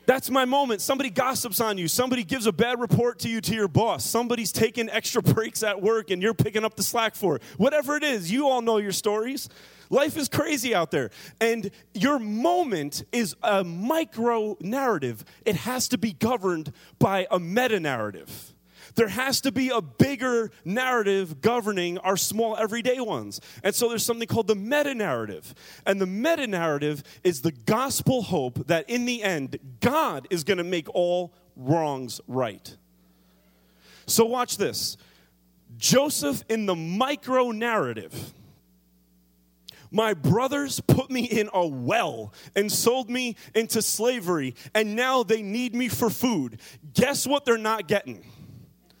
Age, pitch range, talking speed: 30-49, 170-245 Hz, 160 wpm